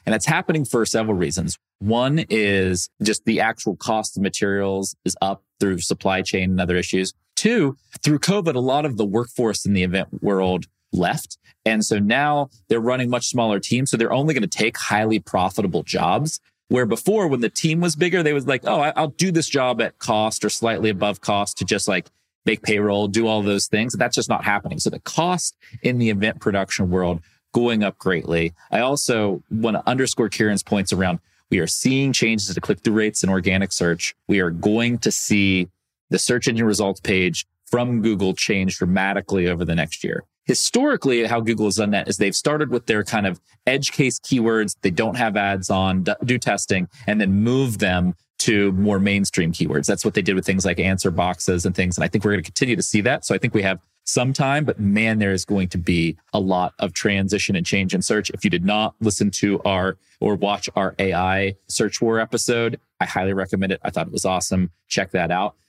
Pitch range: 95-125 Hz